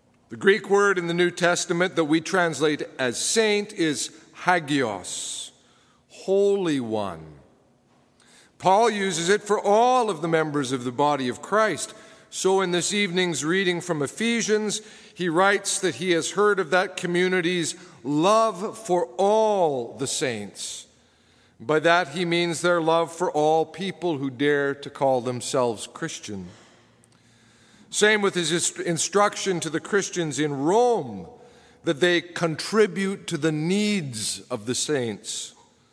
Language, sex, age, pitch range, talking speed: English, male, 50-69, 145-195 Hz, 140 wpm